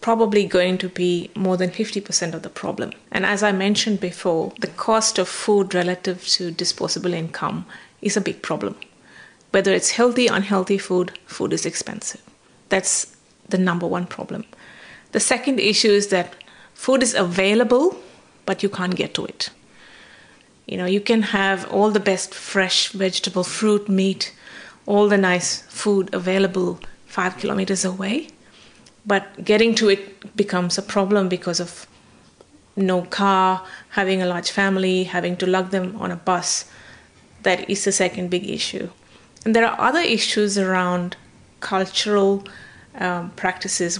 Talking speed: 150 wpm